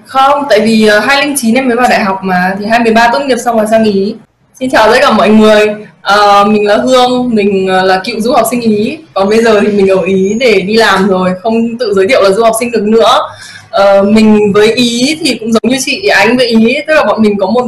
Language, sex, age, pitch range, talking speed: Vietnamese, female, 20-39, 195-245 Hz, 250 wpm